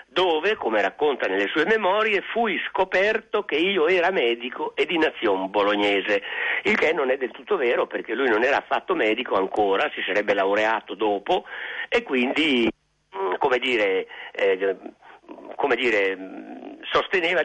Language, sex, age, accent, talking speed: Italian, male, 50-69, native, 130 wpm